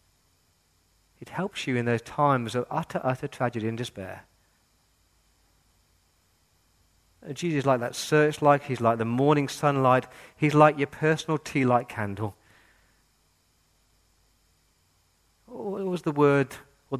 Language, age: English, 40-59